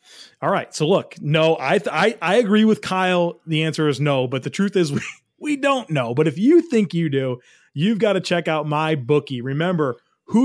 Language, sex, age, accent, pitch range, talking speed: English, male, 30-49, American, 145-175 Hz, 220 wpm